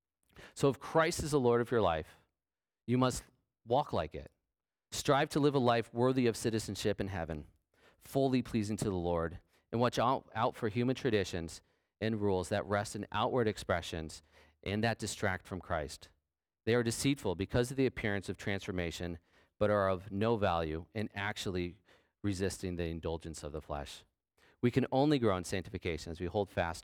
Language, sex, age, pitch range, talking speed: English, male, 40-59, 85-110 Hz, 175 wpm